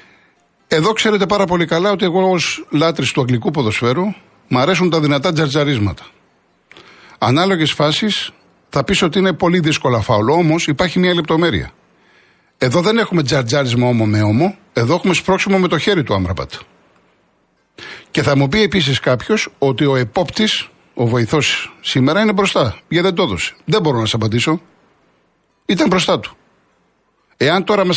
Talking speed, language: 155 wpm, Greek